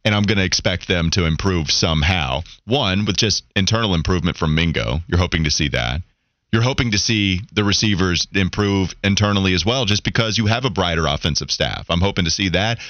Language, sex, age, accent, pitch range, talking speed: English, male, 30-49, American, 90-115 Hz, 205 wpm